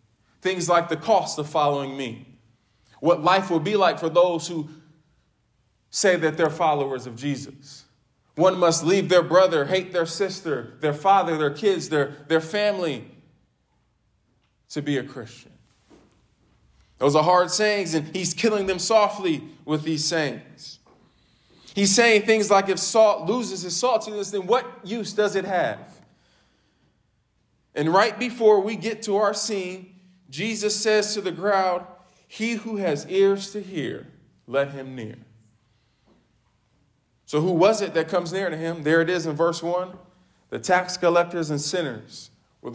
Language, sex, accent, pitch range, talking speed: English, male, American, 140-190 Hz, 155 wpm